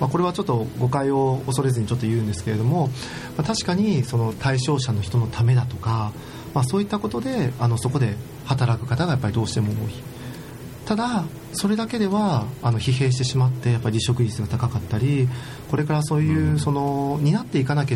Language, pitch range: Japanese, 115-150 Hz